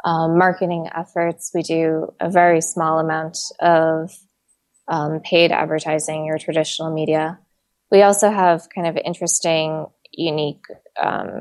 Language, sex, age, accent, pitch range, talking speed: English, female, 20-39, American, 160-185 Hz, 125 wpm